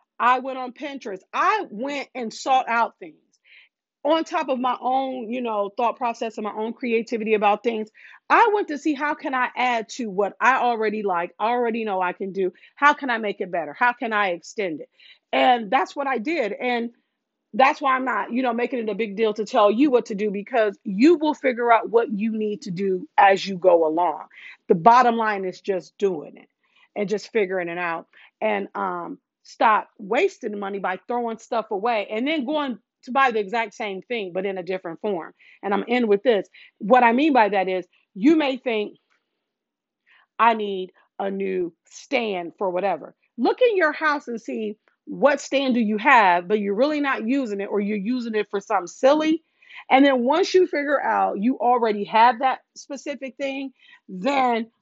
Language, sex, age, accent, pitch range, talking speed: English, female, 40-59, American, 205-270 Hz, 200 wpm